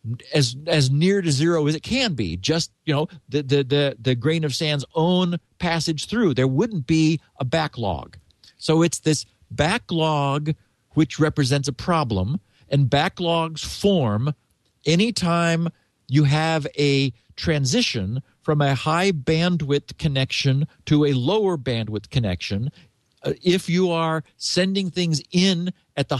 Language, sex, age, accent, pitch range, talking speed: English, male, 50-69, American, 130-165 Hz, 140 wpm